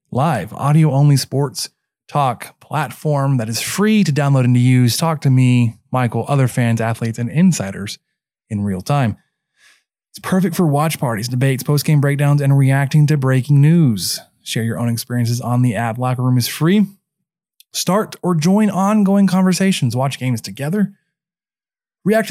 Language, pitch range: English, 125-180 Hz